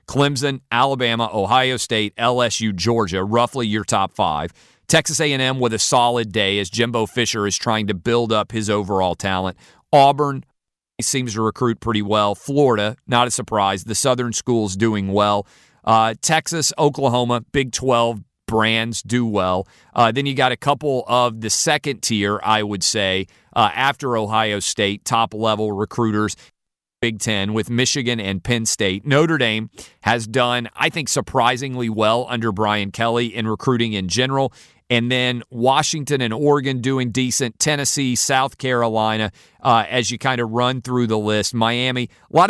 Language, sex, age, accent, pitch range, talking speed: English, male, 40-59, American, 105-130 Hz, 160 wpm